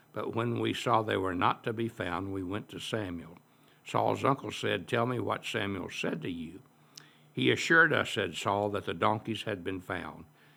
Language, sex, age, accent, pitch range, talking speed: English, male, 60-79, American, 85-115 Hz, 200 wpm